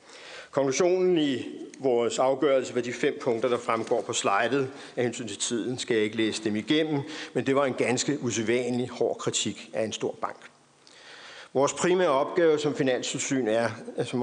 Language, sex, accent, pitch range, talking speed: Danish, male, native, 115-140 Hz, 175 wpm